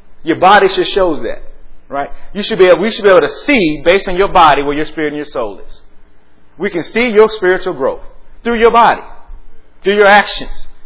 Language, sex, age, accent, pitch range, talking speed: English, male, 30-49, American, 135-200 Hz, 215 wpm